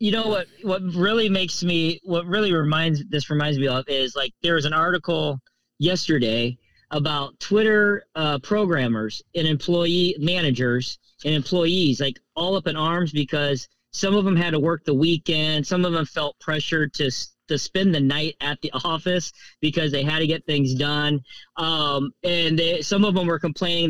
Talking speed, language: 180 wpm, English